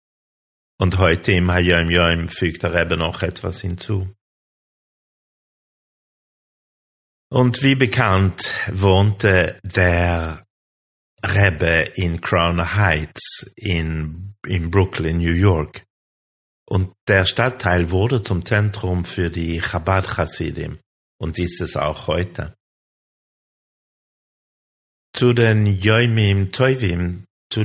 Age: 50-69